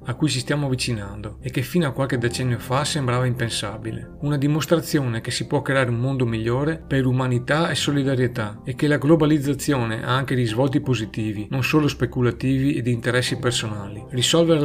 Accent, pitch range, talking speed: native, 120-145 Hz, 170 wpm